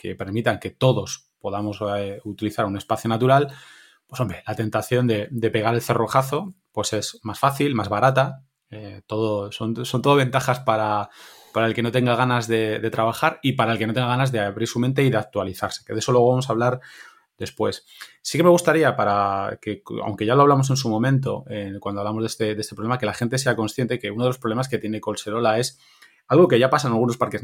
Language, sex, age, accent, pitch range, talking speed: Spanish, male, 20-39, Spanish, 105-125 Hz, 225 wpm